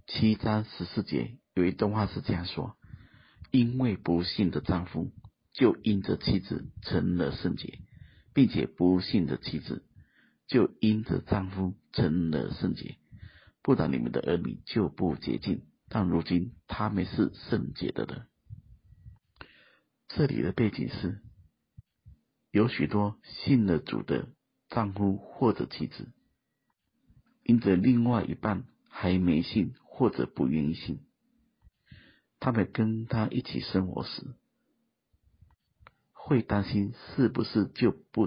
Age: 50-69